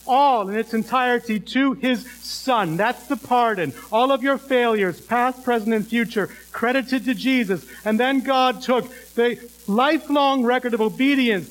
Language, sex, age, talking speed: English, male, 50-69, 155 wpm